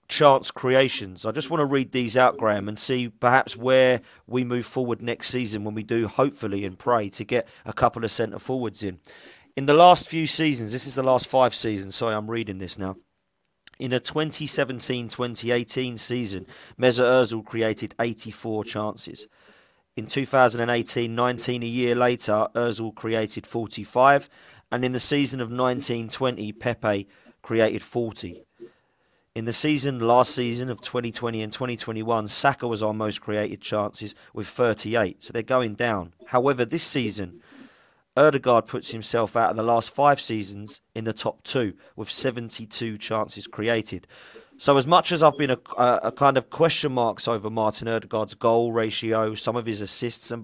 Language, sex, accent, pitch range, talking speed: English, male, British, 110-130 Hz, 165 wpm